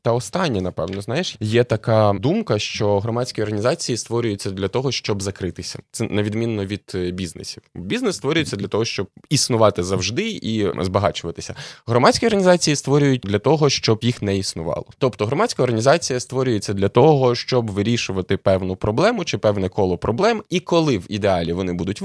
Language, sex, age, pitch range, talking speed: Ukrainian, male, 20-39, 95-125 Hz, 155 wpm